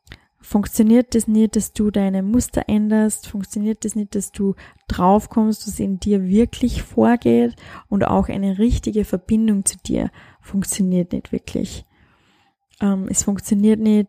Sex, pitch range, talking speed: female, 195-225 Hz, 150 wpm